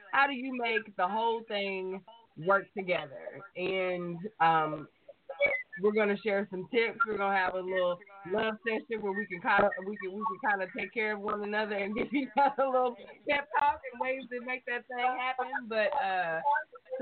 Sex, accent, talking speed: female, American, 200 wpm